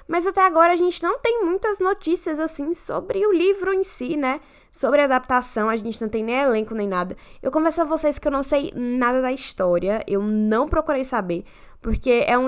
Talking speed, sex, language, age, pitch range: 210 wpm, female, Portuguese, 10-29, 220-300 Hz